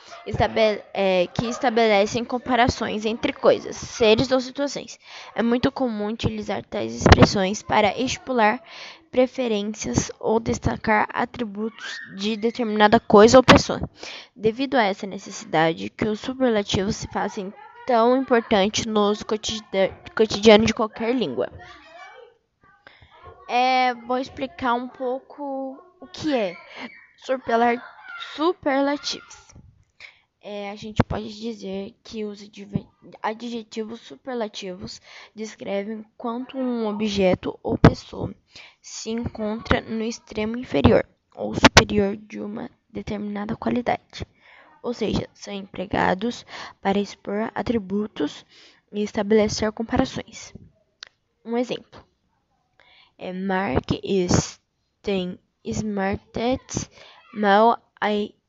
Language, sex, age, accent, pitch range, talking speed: Portuguese, female, 10-29, Brazilian, 205-250 Hz, 95 wpm